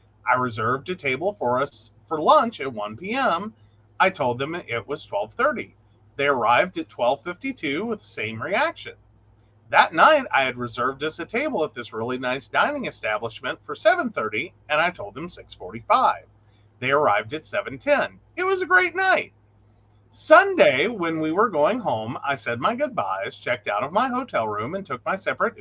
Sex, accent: male, American